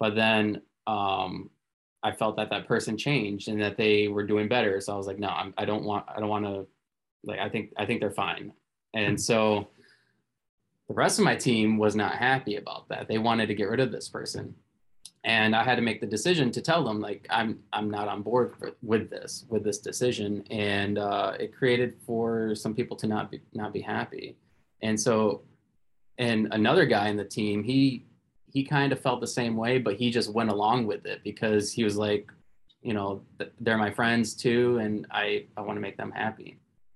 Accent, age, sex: American, 20-39, male